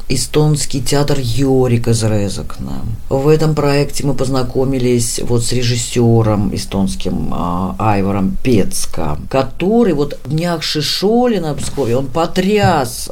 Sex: female